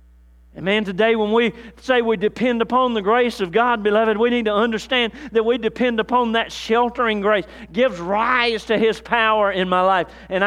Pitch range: 125-205 Hz